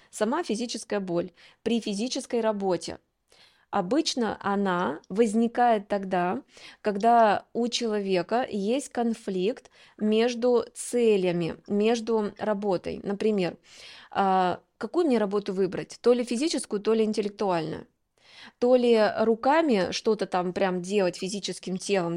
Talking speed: 105 wpm